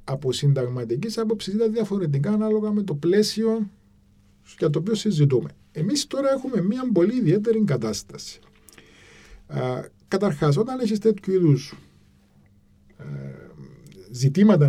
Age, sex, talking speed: 50-69, male, 105 wpm